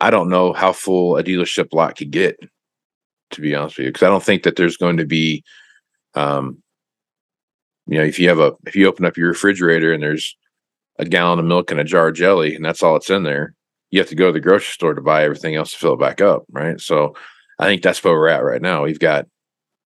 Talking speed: 250 wpm